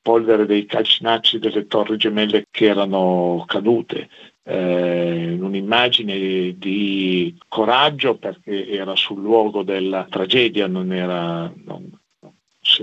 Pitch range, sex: 95-120 Hz, male